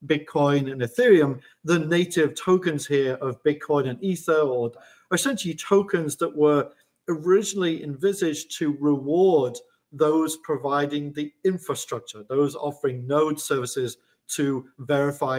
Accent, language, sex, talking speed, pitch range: British, English, male, 115 wpm, 135-165 Hz